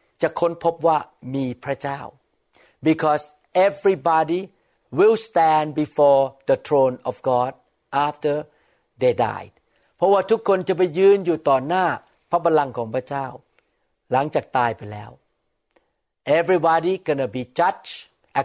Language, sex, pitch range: Thai, male, 140-180 Hz